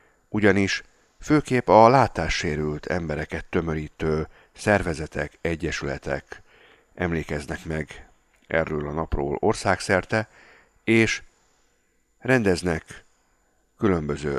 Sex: male